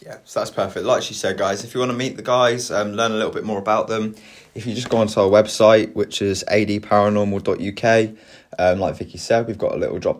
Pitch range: 90-110 Hz